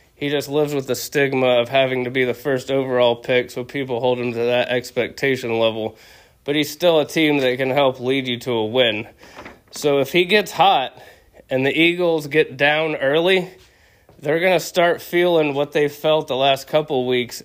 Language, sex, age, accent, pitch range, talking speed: English, male, 20-39, American, 120-145 Hz, 200 wpm